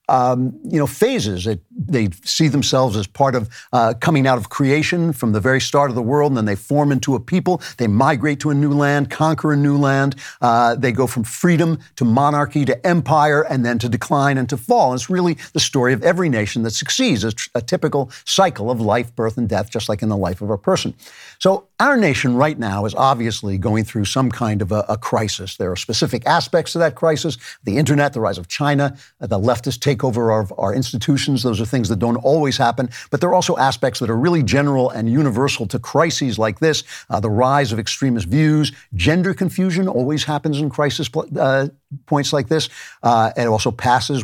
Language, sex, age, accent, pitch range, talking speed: English, male, 50-69, American, 115-150 Hz, 220 wpm